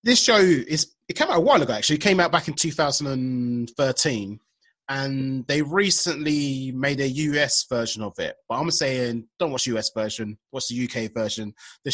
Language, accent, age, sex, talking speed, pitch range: English, British, 30-49, male, 190 wpm, 130-165 Hz